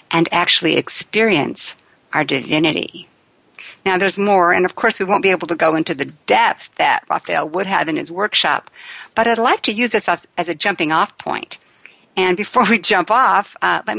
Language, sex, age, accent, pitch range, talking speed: English, female, 60-79, American, 170-230 Hz, 195 wpm